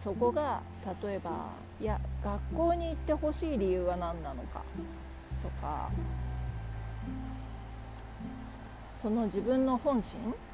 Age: 40-59